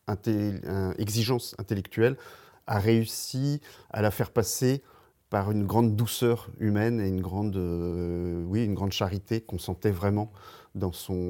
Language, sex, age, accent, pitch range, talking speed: French, male, 40-59, French, 95-115 Hz, 140 wpm